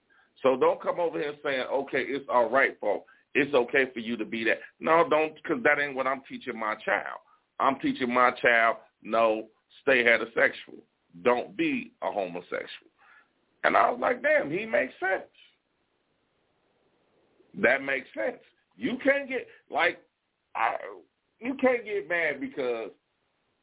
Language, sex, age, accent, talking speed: English, male, 40-59, American, 150 wpm